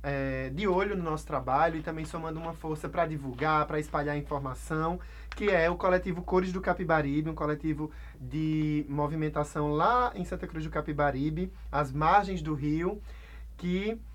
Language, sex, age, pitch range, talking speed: Portuguese, male, 20-39, 140-165 Hz, 155 wpm